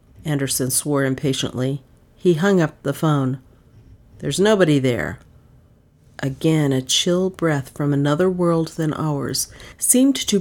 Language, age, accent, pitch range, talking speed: English, 40-59, American, 140-185 Hz, 125 wpm